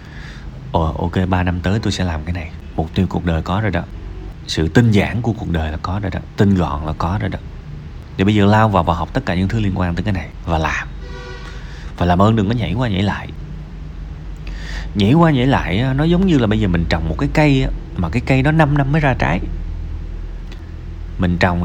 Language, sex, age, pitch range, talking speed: Vietnamese, male, 20-39, 85-115 Hz, 235 wpm